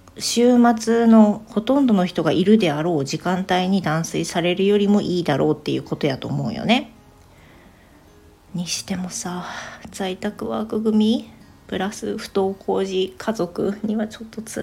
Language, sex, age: Japanese, female, 40-59